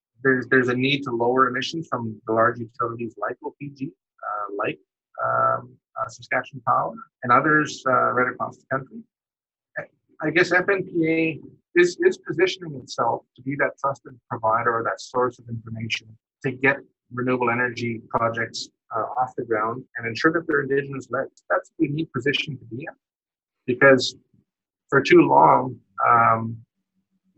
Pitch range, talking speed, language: 115-145 Hz, 155 wpm, English